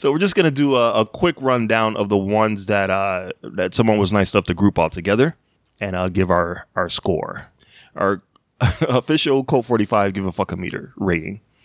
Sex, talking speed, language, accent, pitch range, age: male, 205 wpm, English, American, 100-120 Hz, 30-49